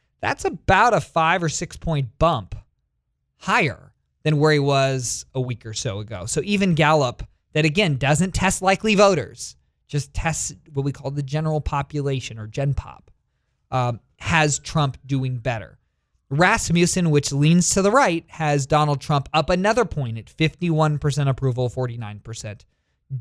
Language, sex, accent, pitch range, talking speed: English, male, American, 120-155 Hz, 155 wpm